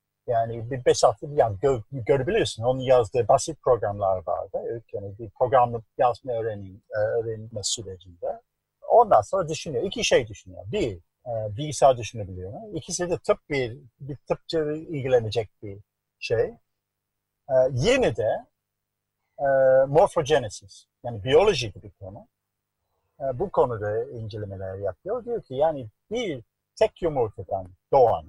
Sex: male